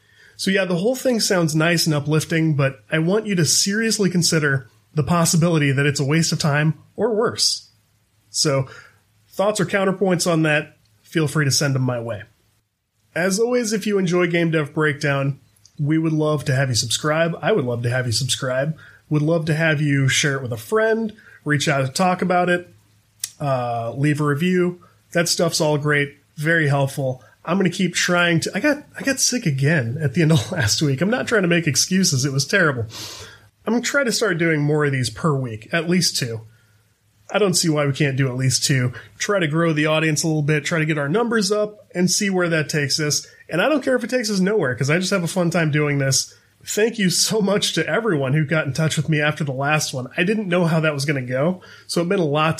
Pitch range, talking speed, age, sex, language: 135-180 Hz, 235 wpm, 30-49, male, English